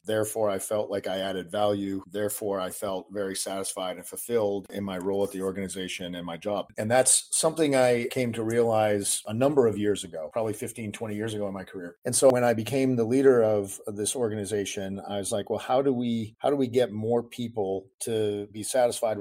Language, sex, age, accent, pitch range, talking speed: English, male, 40-59, American, 100-115 Hz, 210 wpm